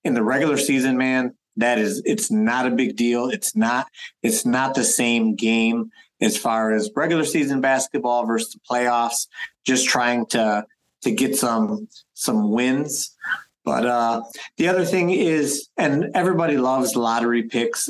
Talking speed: 160 wpm